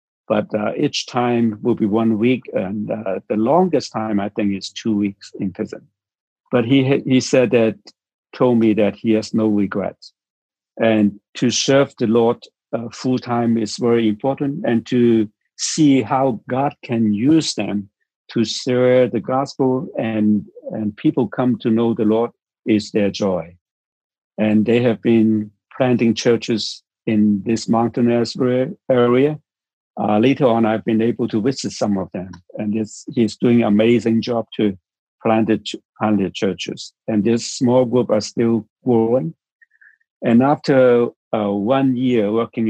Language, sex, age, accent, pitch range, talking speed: English, male, 60-79, German, 105-125 Hz, 155 wpm